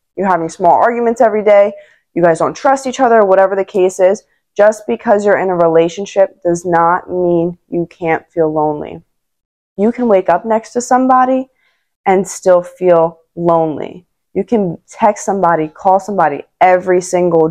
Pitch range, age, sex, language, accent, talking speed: 175-200 Hz, 20-39, female, English, American, 165 wpm